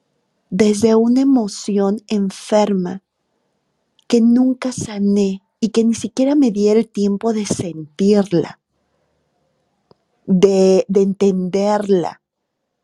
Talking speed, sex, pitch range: 95 wpm, female, 190-265 Hz